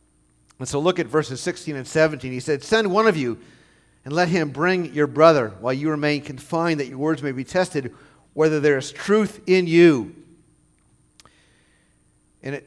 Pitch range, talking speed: 130-185 Hz, 175 wpm